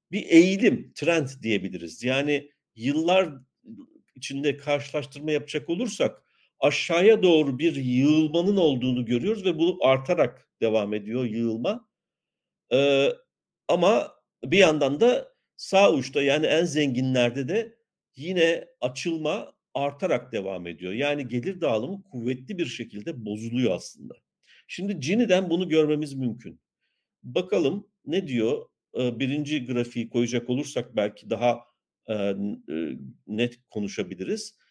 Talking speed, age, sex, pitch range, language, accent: 110 wpm, 50-69, male, 125-185 Hz, Turkish, native